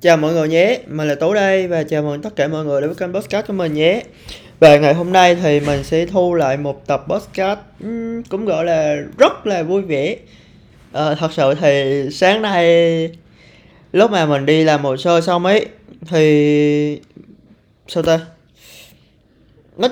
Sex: male